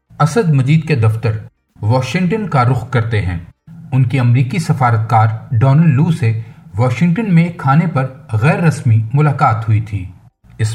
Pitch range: 120-160 Hz